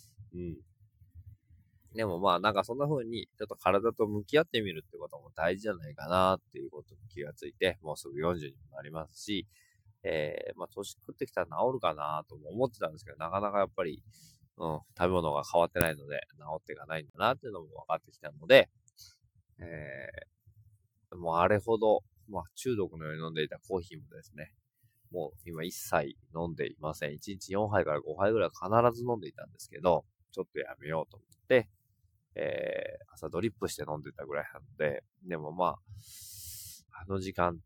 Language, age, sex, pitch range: Japanese, 20-39, male, 90-115 Hz